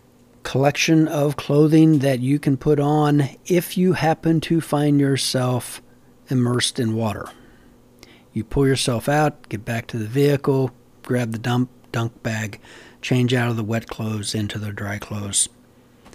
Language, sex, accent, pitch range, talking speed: English, male, American, 115-145 Hz, 150 wpm